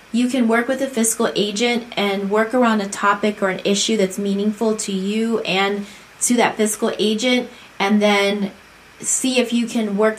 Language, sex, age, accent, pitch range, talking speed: English, female, 20-39, American, 200-230 Hz, 185 wpm